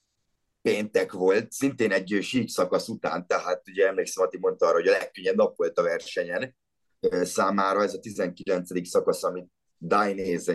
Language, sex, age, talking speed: Hungarian, male, 30-49, 155 wpm